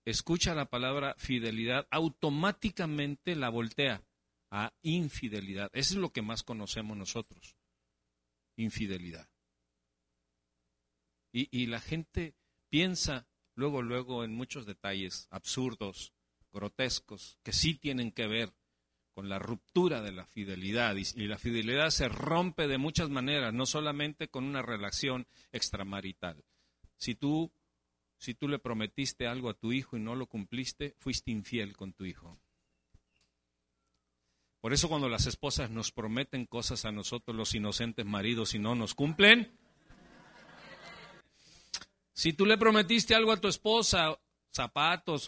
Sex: male